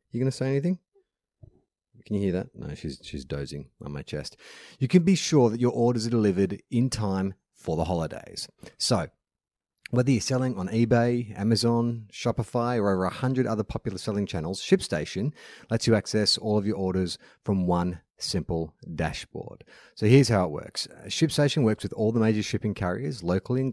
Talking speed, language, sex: 185 wpm, English, male